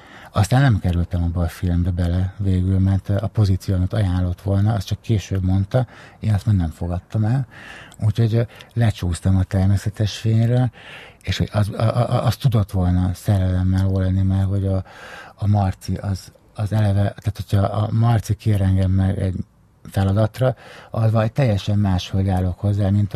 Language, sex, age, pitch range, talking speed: Hungarian, male, 60-79, 95-110 Hz, 150 wpm